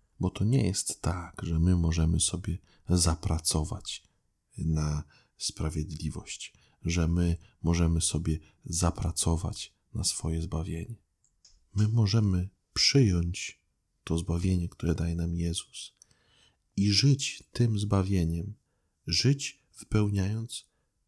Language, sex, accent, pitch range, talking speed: Polish, male, native, 85-105 Hz, 100 wpm